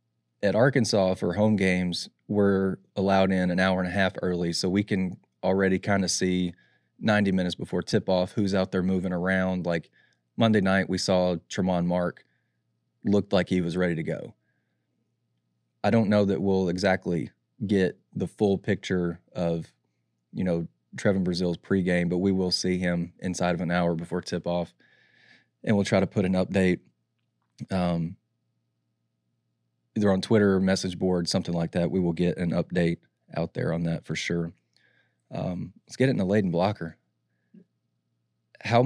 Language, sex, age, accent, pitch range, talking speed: English, male, 20-39, American, 85-100 Hz, 170 wpm